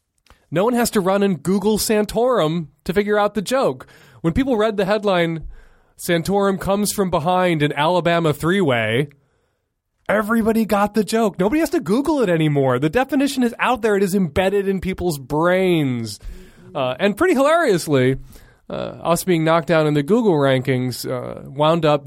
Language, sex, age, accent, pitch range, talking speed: English, male, 30-49, American, 125-180 Hz, 170 wpm